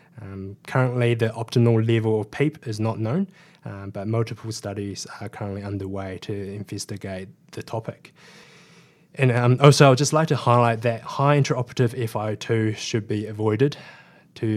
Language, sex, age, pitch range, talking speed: English, male, 20-39, 105-130 Hz, 150 wpm